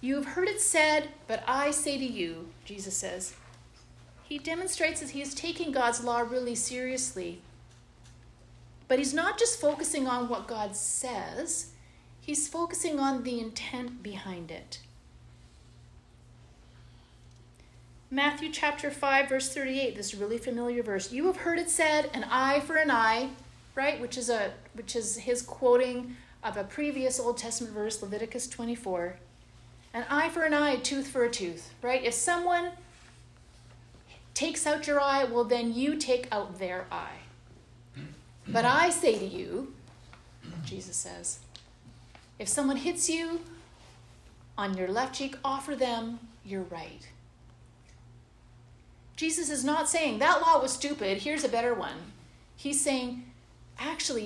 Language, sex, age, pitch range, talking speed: English, female, 40-59, 185-285 Hz, 145 wpm